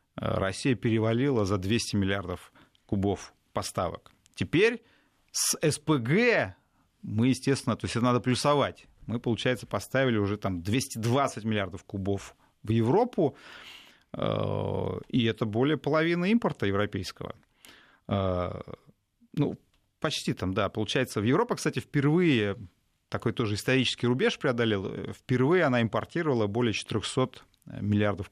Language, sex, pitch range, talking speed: Russian, male, 100-130 Hz, 110 wpm